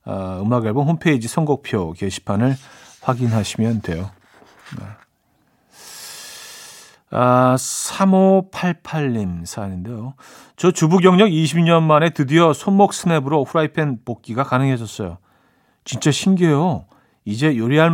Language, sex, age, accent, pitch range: Korean, male, 40-59, native, 115-170 Hz